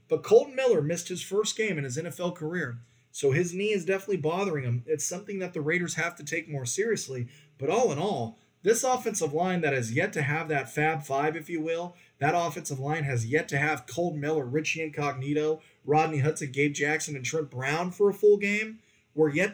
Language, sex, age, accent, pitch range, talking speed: English, male, 20-39, American, 140-190 Hz, 215 wpm